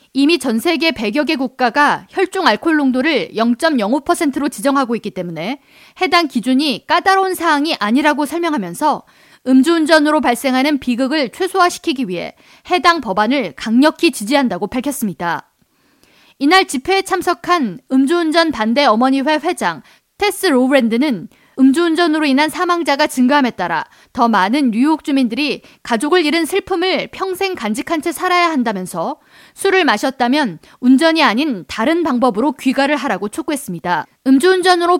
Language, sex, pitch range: Korean, female, 255-330 Hz